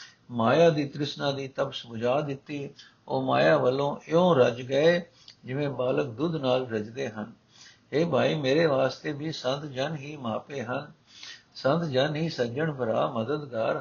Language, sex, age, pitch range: Punjabi, male, 60-79, 130-160 Hz